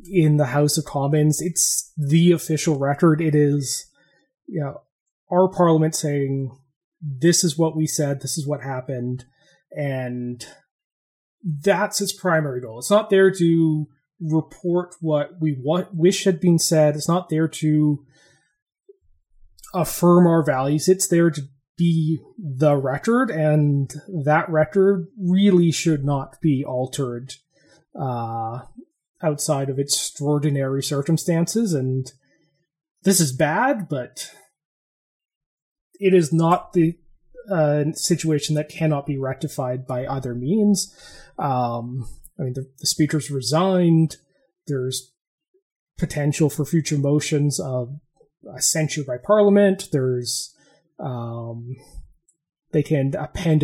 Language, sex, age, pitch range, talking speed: English, male, 30-49, 140-170 Hz, 120 wpm